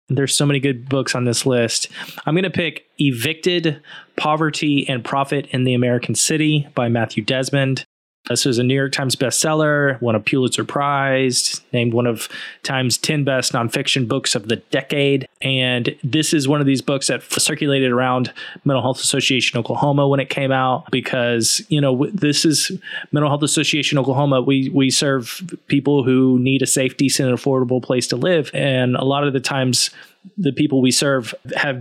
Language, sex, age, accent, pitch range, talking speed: English, male, 20-39, American, 125-145 Hz, 185 wpm